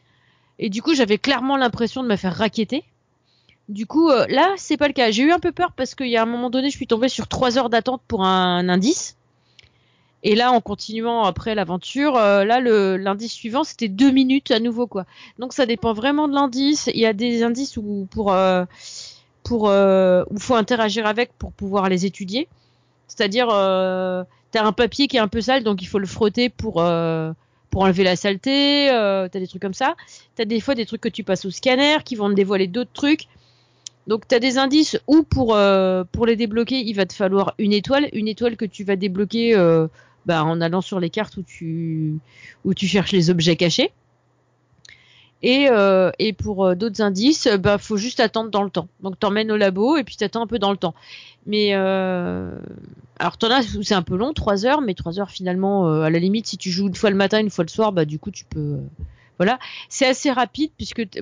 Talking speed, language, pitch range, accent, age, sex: 225 wpm, French, 185-245 Hz, French, 30-49, female